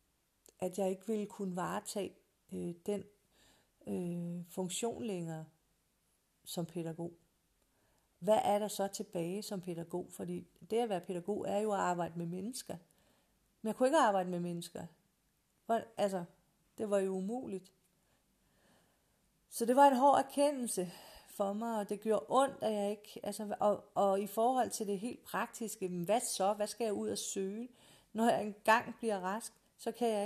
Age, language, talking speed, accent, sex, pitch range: 40-59, Danish, 160 wpm, native, female, 185-225 Hz